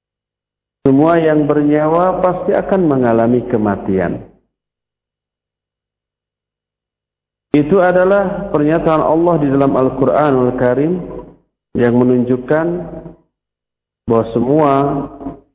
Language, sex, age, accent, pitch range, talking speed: Indonesian, male, 50-69, native, 115-150 Hz, 75 wpm